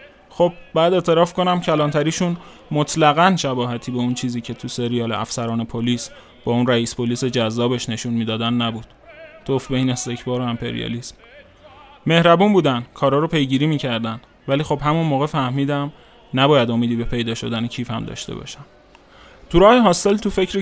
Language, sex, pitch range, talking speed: Persian, male, 125-160 Hz, 155 wpm